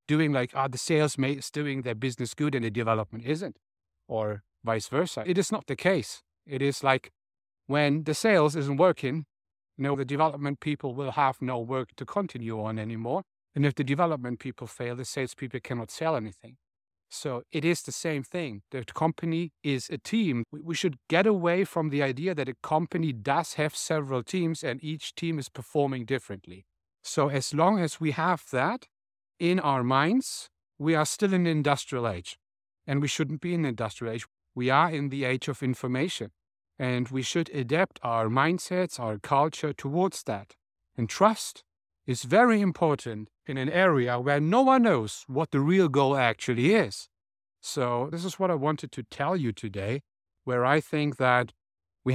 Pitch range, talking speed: 120-160 Hz, 185 wpm